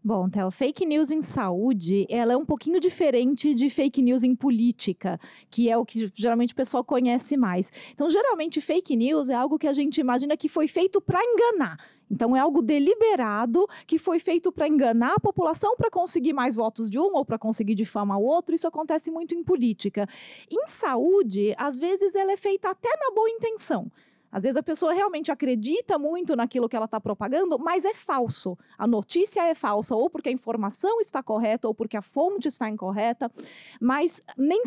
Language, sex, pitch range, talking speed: English, female, 230-340 Hz, 195 wpm